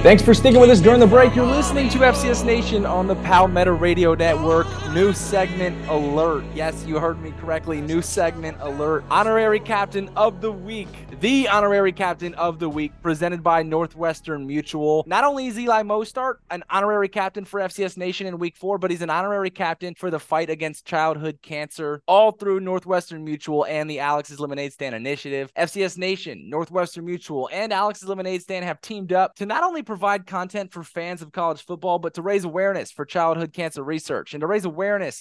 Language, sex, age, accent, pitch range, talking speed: English, male, 20-39, American, 150-190 Hz, 190 wpm